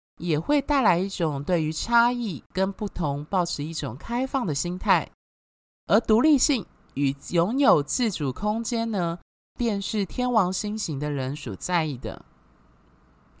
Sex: male